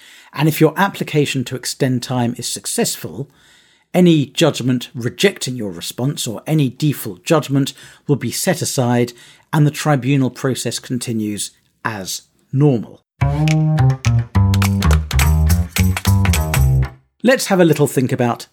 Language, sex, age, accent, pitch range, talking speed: English, male, 50-69, British, 120-150 Hz, 115 wpm